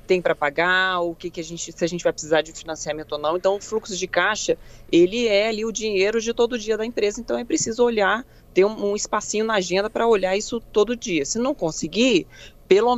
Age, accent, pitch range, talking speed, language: 20-39, Brazilian, 170-220 Hz, 230 wpm, Portuguese